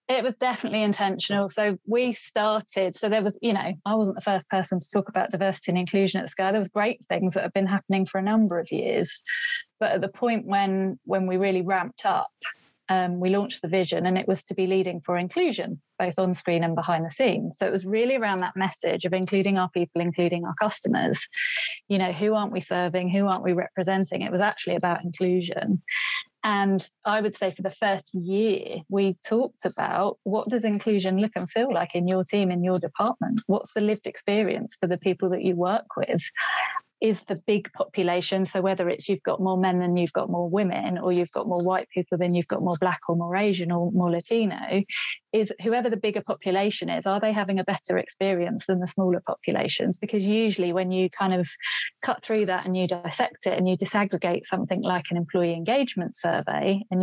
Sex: female